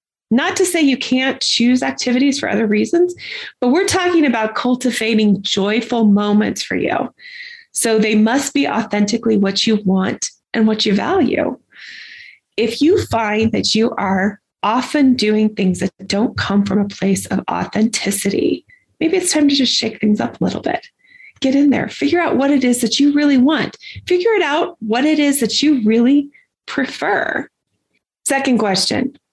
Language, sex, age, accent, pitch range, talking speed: English, female, 20-39, American, 205-285 Hz, 170 wpm